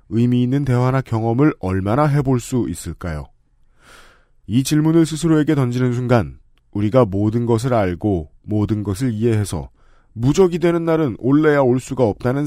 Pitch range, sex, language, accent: 110-145 Hz, male, Korean, native